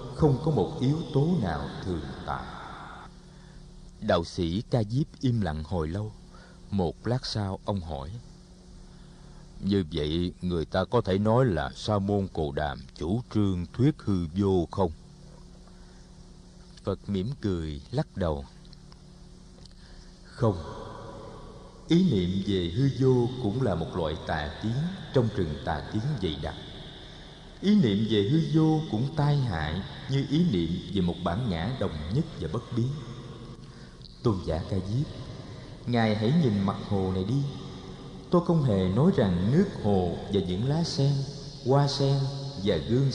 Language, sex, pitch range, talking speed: Vietnamese, male, 100-140 Hz, 150 wpm